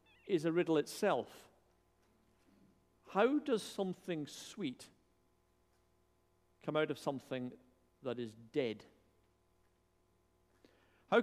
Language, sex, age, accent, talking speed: English, male, 50-69, British, 85 wpm